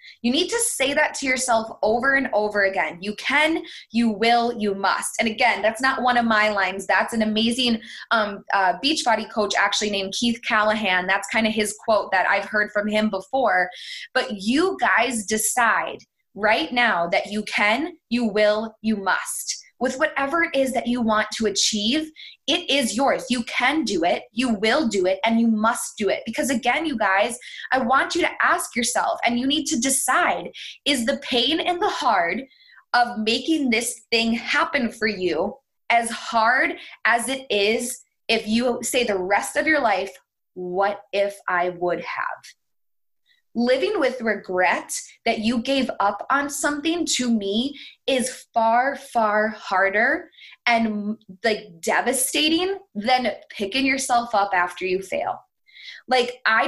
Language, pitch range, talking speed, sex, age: English, 210-270 Hz, 170 wpm, female, 20-39